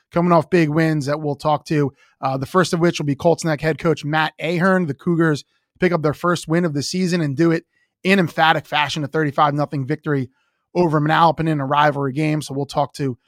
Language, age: English, 20-39